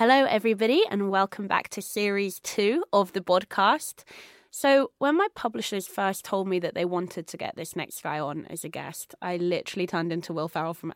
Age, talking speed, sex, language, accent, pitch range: 20-39, 205 wpm, female, English, British, 165-205 Hz